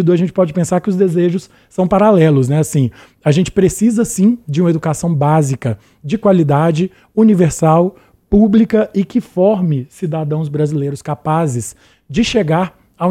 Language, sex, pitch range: Portuguese, male, 155-205 Hz